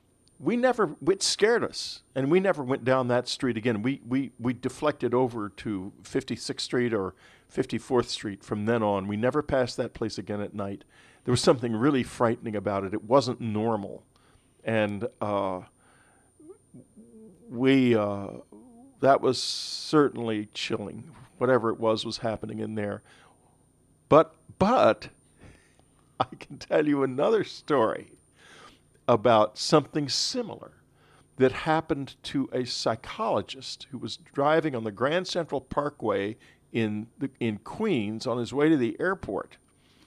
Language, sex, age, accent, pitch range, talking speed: English, male, 50-69, American, 110-150 Hz, 140 wpm